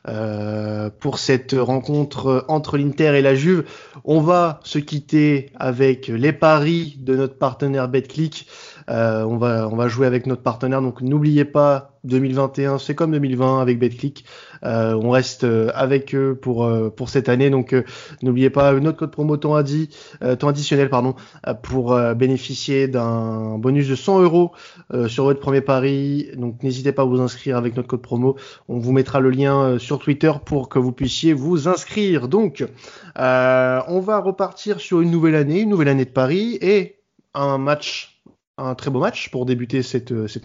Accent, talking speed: French, 180 wpm